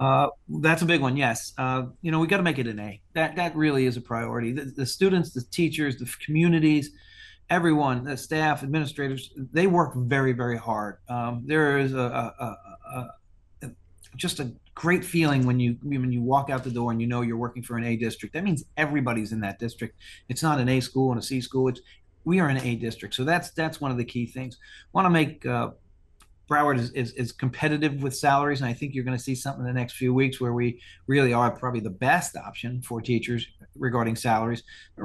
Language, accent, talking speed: English, American, 230 wpm